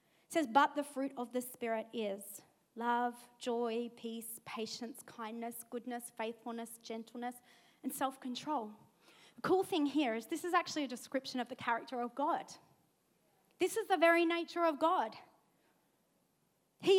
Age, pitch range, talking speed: 30-49, 240-325 Hz, 150 wpm